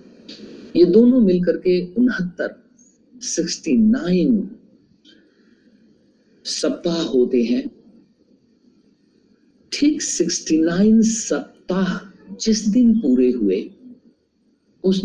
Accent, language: native, Hindi